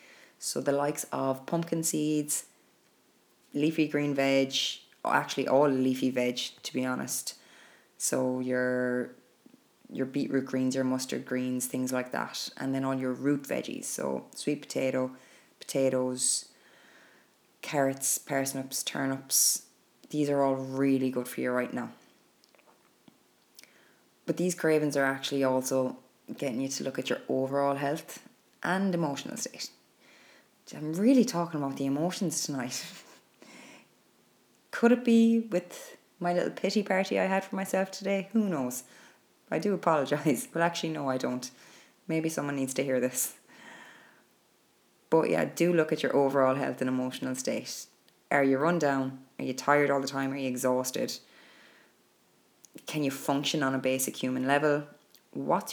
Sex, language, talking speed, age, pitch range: female, English, 145 wpm, 20-39, 130-155 Hz